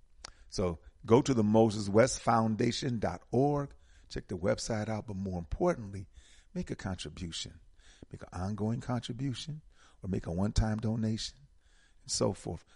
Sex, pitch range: male, 80-110 Hz